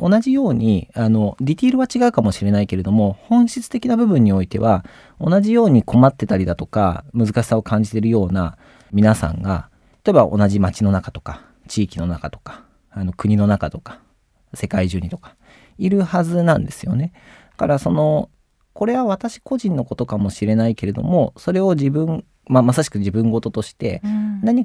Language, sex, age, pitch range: Japanese, male, 40-59, 100-155 Hz